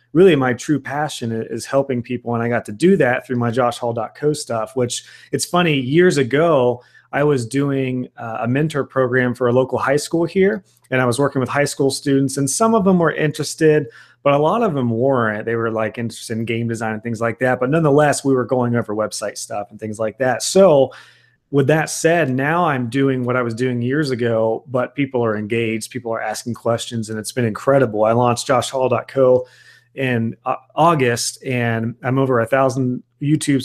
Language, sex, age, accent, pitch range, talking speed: English, male, 30-49, American, 115-140 Hz, 200 wpm